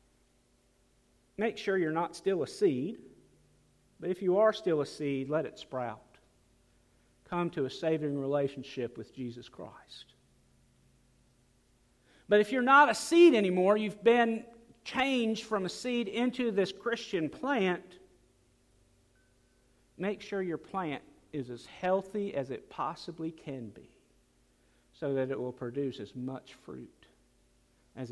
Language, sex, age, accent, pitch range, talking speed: English, male, 50-69, American, 125-200 Hz, 135 wpm